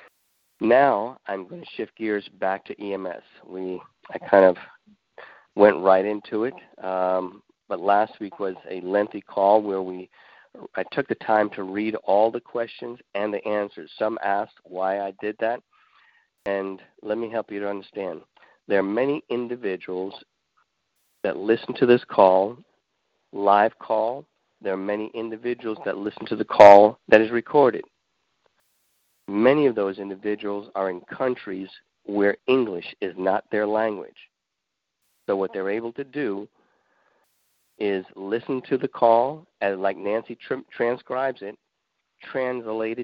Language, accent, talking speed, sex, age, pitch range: English, American, 145 wpm, male, 50-69, 100-115 Hz